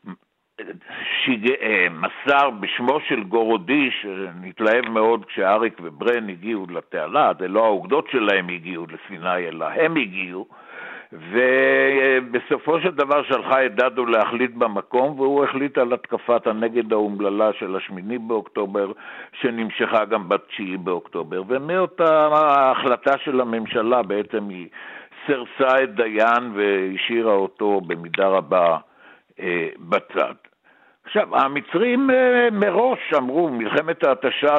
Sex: male